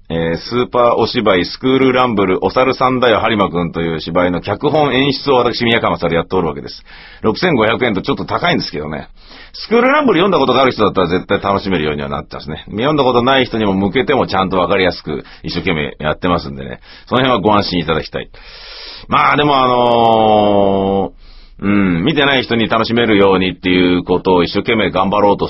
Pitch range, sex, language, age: 85-130 Hz, male, Japanese, 40-59